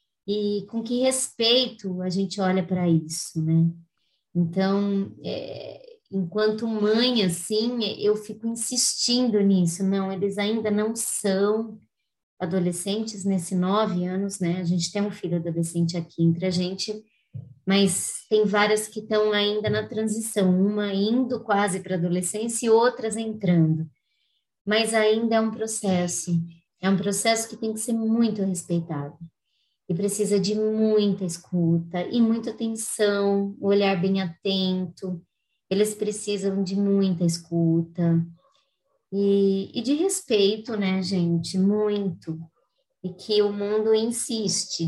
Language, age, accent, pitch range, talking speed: Portuguese, 20-39, Brazilian, 180-215 Hz, 130 wpm